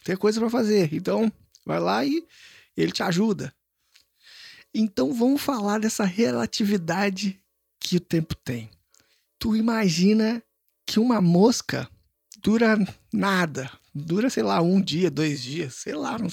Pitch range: 165-230 Hz